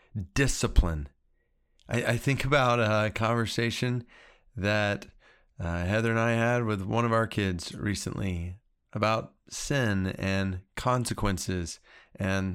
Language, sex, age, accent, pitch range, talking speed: English, male, 30-49, American, 105-135 Hz, 115 wpm